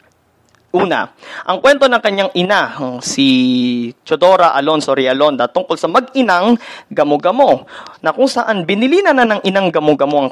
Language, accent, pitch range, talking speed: Filipino, native, 140-215 Hz, 135 wpm